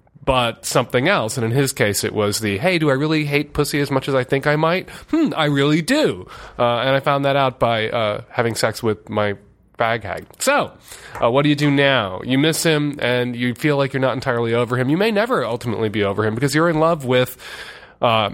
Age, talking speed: 30-49, 240 wpm